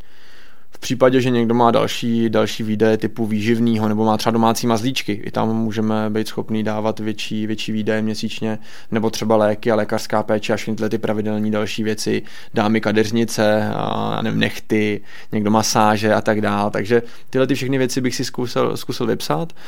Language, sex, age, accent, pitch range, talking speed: Czech, male, 20-39, native, 110-115 Hz, 170 wpm